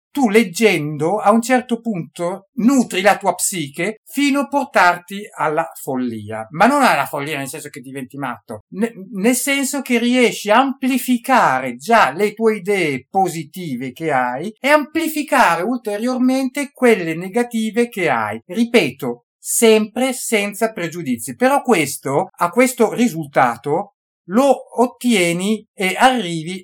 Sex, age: male, 50-69